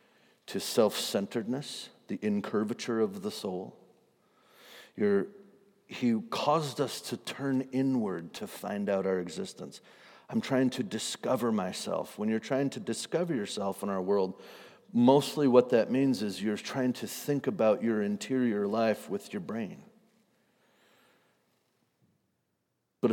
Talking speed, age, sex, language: 125 wpm, 50-69, male, English